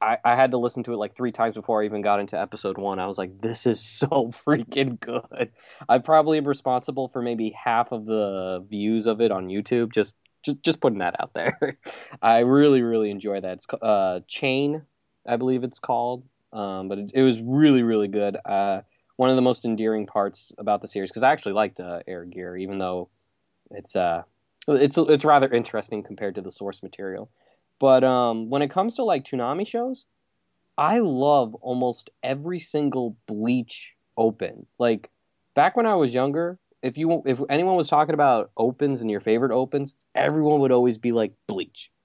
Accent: American